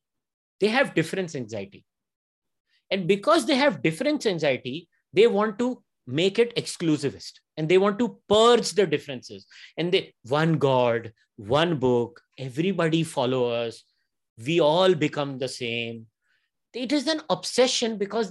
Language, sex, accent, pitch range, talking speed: English, male, Indian, 150-245 Hz, 140 wpm